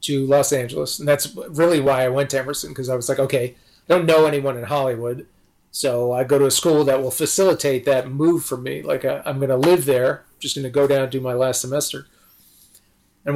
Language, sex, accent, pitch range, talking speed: English, male, American, 125-150 Hz, 220 wpm